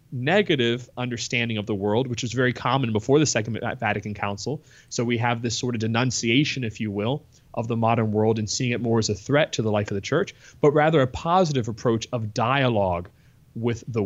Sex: male